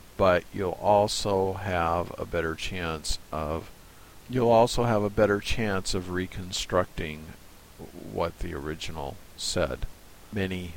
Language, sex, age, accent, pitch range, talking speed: English, male, 50-69, American, 85-100 Hz, 115 wpm